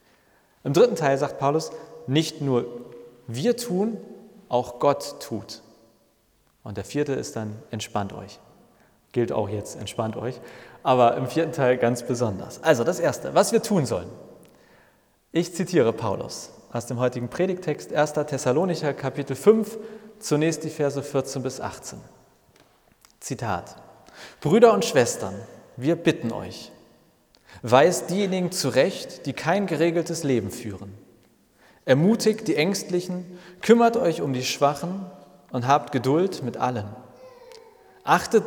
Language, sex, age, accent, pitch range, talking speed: German, male, 40-59, German, 120-175 Hz, 130 wpm